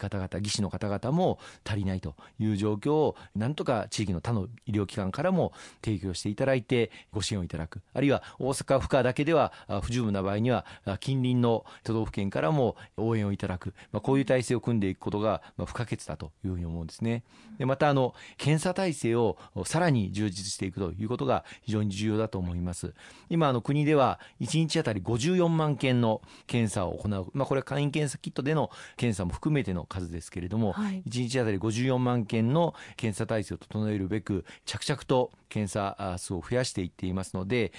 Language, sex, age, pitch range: Japanese, male, 40-59, 95-125 Hz